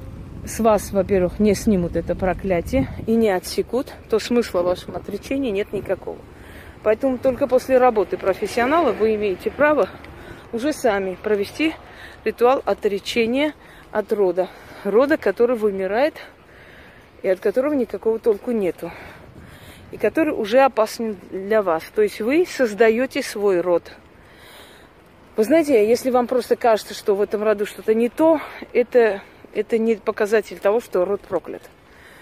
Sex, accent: female, native